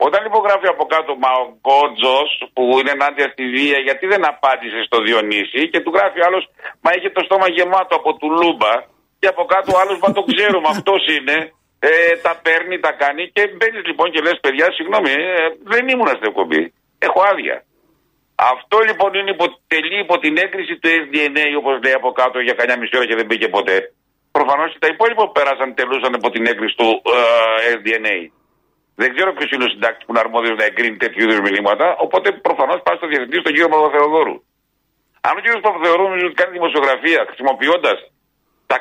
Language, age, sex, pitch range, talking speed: Greek, 50-69, male, 130-180 Hz, 185 wpm